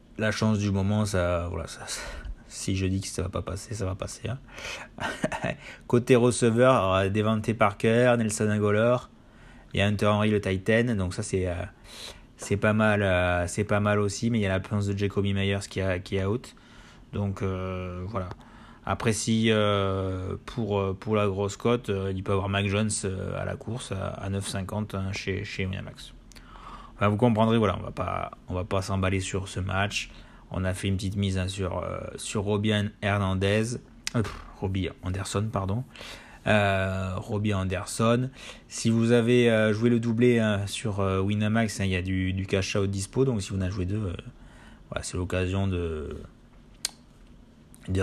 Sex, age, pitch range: male, 20-39, 95-110 Hz